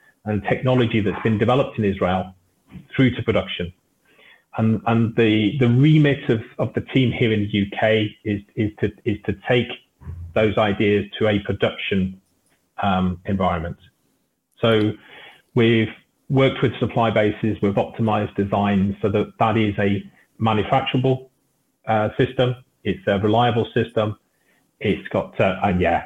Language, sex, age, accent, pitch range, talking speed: English, male, 30-49, British, 105-135 Hz, 145 wpm